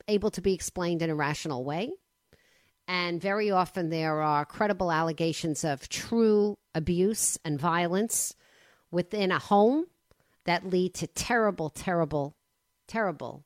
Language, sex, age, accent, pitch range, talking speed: English, female, 50-69, American, 165-195 Hz, 130 wpm